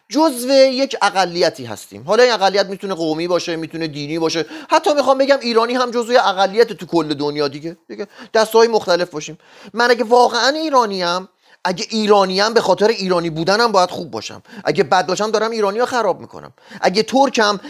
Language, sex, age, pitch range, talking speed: Persian, male, 30-49, 190-270 Hz, 175 wpm